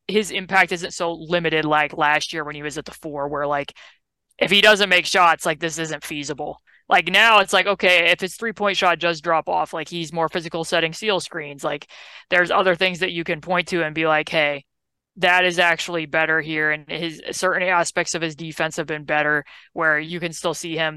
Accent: American